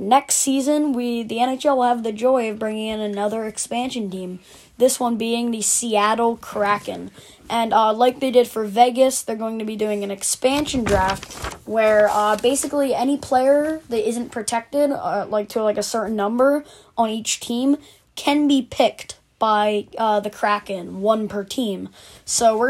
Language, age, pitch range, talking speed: English, 20-39, 210-255 Hz, 175 wpm